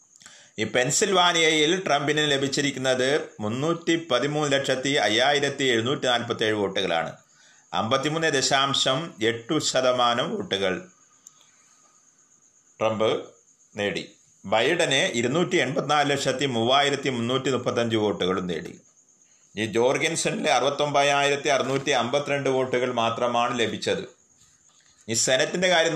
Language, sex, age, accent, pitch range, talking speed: Malayalam, male, 30-49, native, 115-145 Hz, 80 wpm